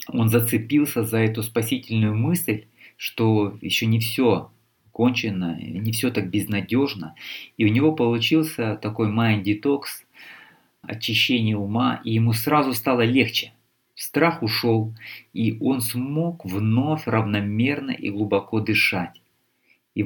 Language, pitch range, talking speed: Russian, 105-130 Hz, 120 wpm